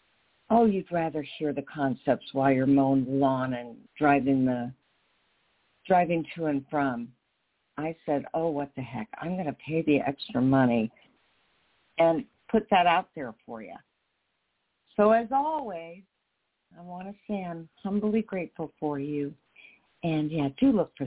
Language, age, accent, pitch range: English, 50-69, American, 135-180 Hz